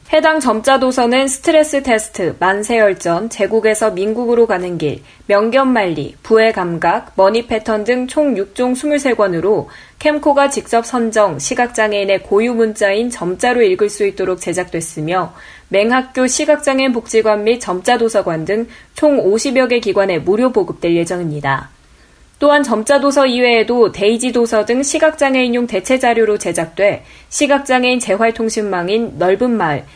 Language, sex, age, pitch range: Korean, female, 20-39, 190-255 Hz